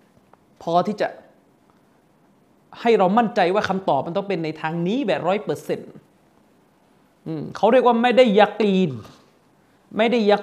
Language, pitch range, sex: Thai, 195-255 Hz, male